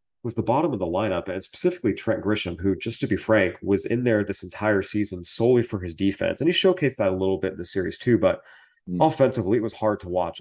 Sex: male